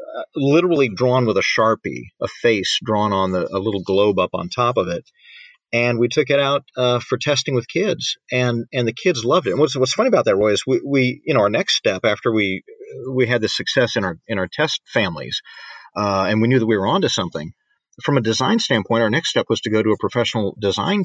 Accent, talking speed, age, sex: American, 235 wpm, 40-59, male